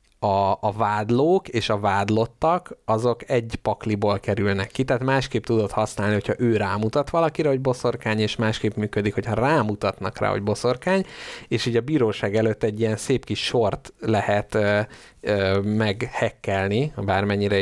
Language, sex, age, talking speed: Hungarian, male, 30-49, 145 wpm